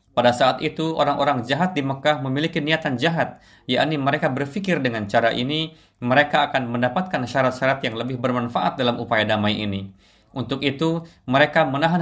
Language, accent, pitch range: Indonesian, native, 110-145 Hz